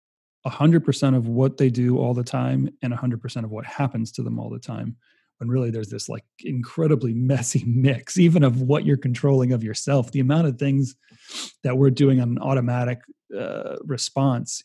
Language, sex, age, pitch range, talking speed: English, male, 30-49, 115-135 Hz, 180 wpm